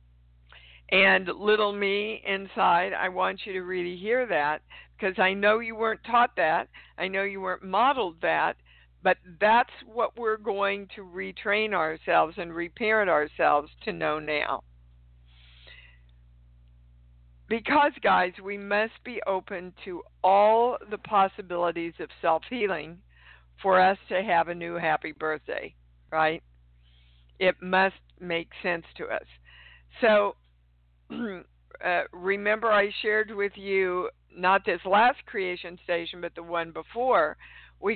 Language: English